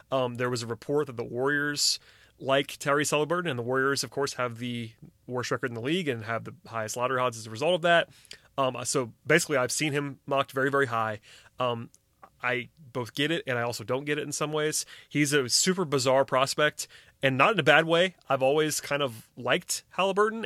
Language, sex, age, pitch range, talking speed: English, male, 30-49, 125-150 Hz, 220 wpm